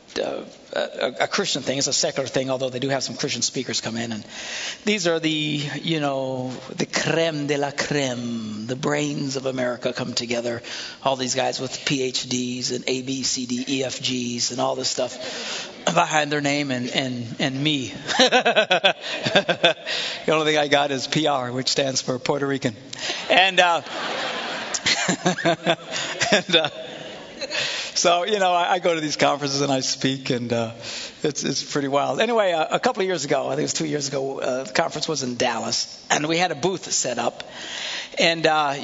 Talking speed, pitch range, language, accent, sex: 175 wpm, 130-165 Hz, English, American, male